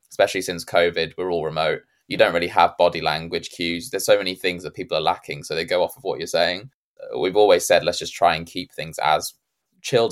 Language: English